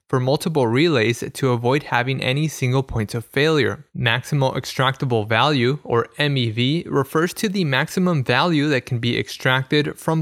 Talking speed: 155 wpm